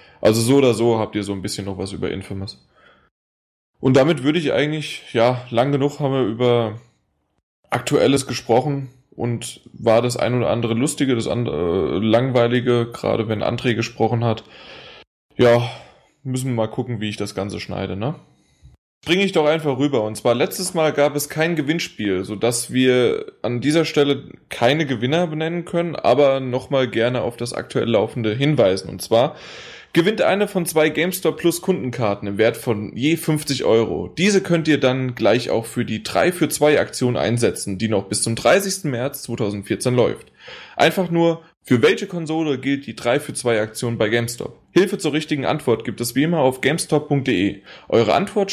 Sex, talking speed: male, 175 wpm